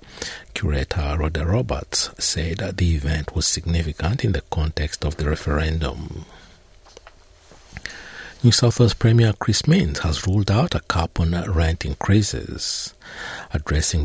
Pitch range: 75-105 Hz